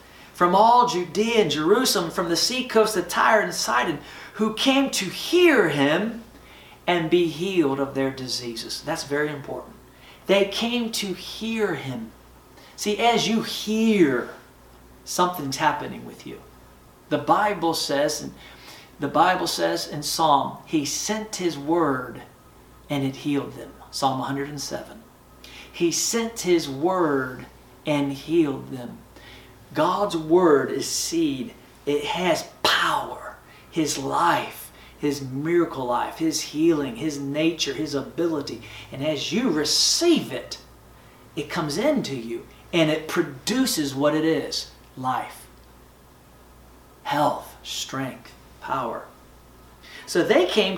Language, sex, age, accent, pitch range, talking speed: English, male, 40-59, American, 135-205 Hz, 125 wpm